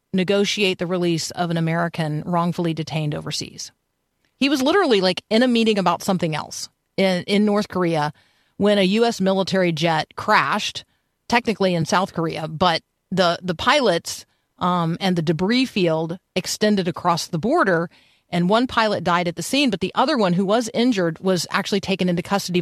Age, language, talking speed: 40-59, English, 170 wpm